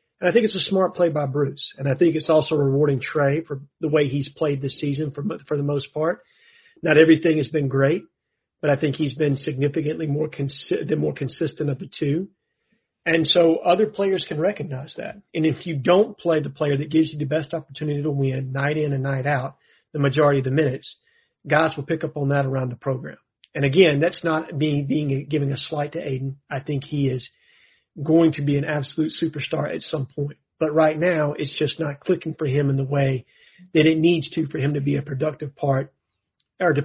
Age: 40-59